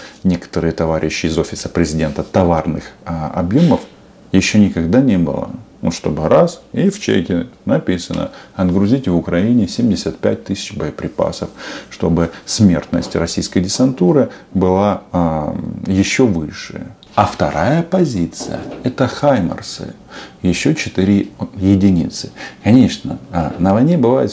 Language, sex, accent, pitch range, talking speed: Russian, male, native, 85-100 Hz, 110 wpm